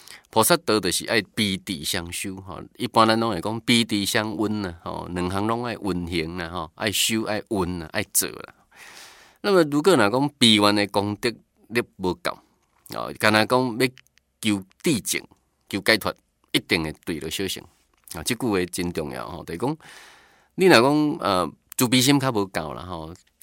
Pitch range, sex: 90-115 Hz, male